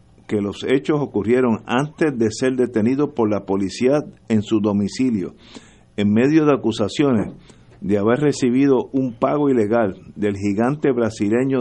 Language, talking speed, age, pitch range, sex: Spanish, 140 wpm, 50-69, 100-125 Hz, male